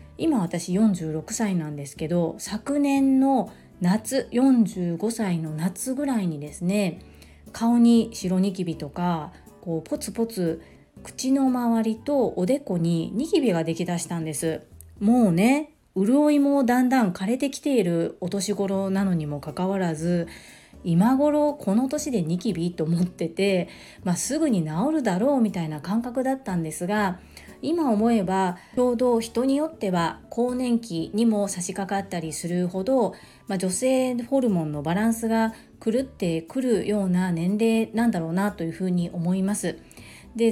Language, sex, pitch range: Japanese, female, 175-250 Hz